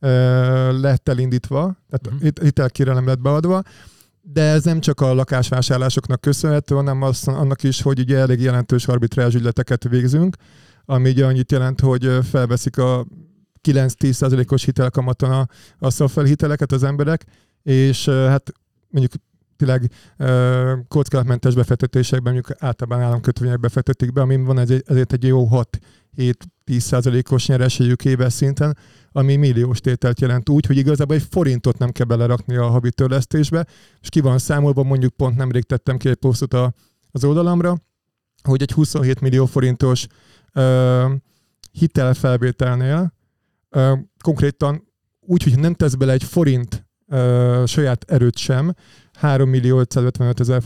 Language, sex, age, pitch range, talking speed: Hungarian, male, 30-49, 125-140 Hz, 125 wpm